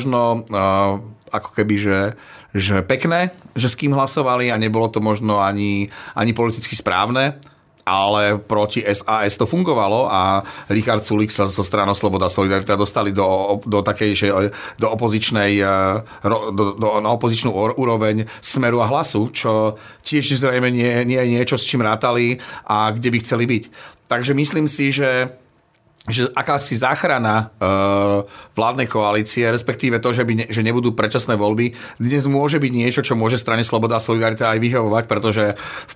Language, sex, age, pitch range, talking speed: Slovak, male, 40-59, 105-120 Hz, 155 wpm